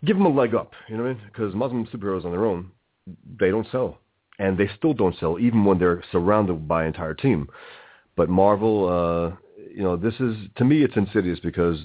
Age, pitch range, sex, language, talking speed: 40-59, 85-110 Hz, male, English, 225 wpm